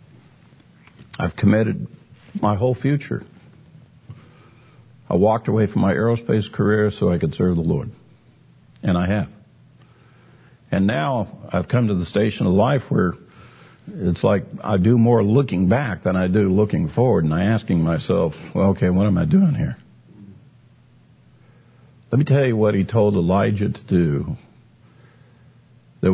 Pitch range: 95-120 Hz